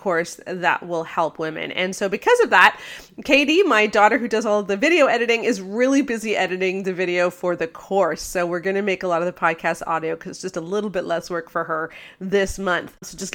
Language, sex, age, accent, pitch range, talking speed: English, female, 30-49, American, 175-220 Hz, 240 wpm